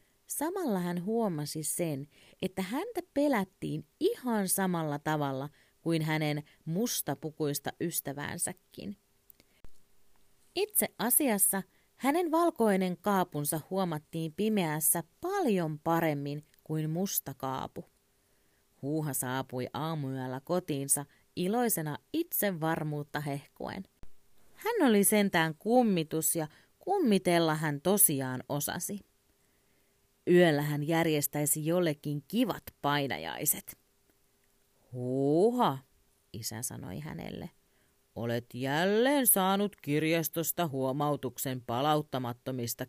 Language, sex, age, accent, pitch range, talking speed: Finnish, female, 30-49, native, 150-200 Hz, 80 wpm